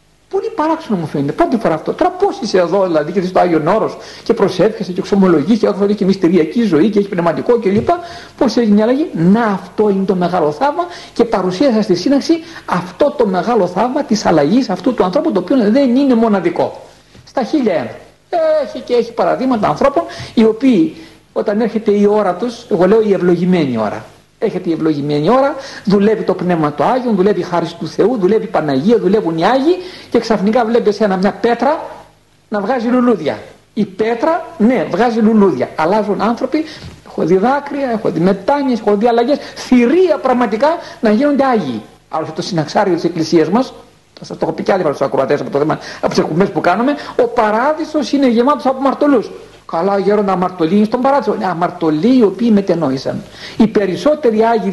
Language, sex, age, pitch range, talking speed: Greek, male, 60-79, 190-275 Hz, 190 wpm